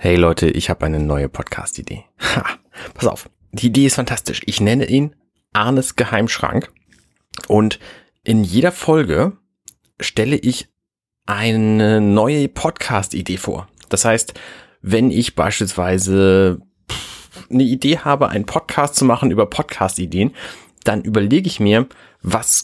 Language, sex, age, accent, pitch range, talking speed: German, male, 30-49, German, 95-120 Hz, 125 wpm